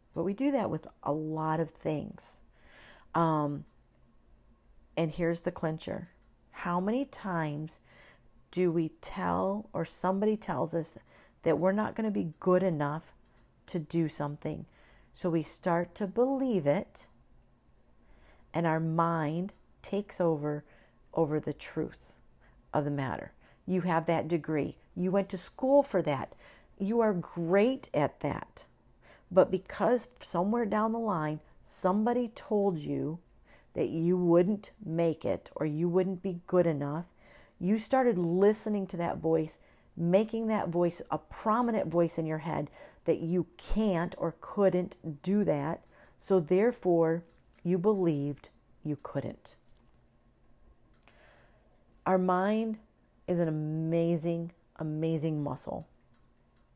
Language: English